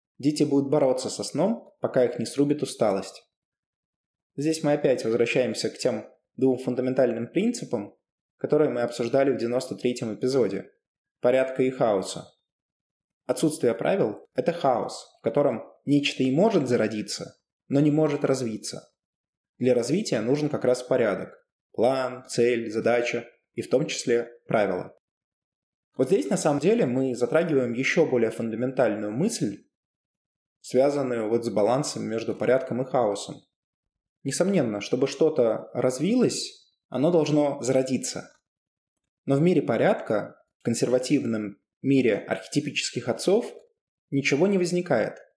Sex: male